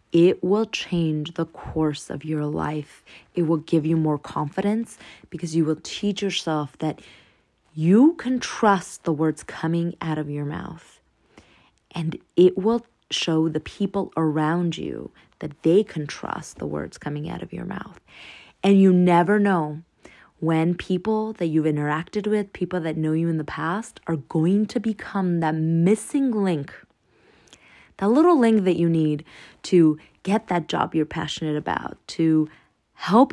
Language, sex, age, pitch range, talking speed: English, female, 20-39, 155-195 Hz, 160 wpm